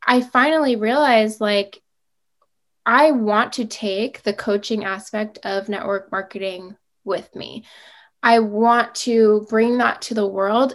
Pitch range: 210-240 Hz